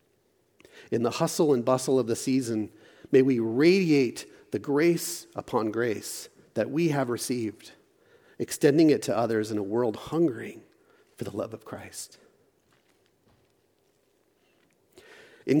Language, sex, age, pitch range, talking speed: English, male, 40-59, 120-185 Hz, 125 wpm